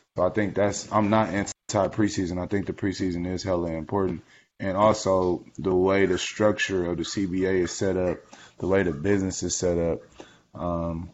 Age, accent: 20-39, American